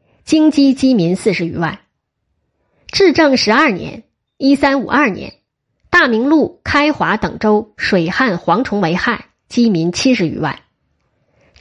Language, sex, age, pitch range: Chinese, female, 20-39, 195-270 Hz